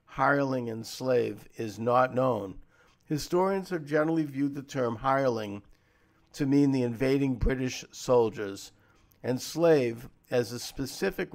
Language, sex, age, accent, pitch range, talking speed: English, male, 50-69, American, 115-145 Hz, 125 wpm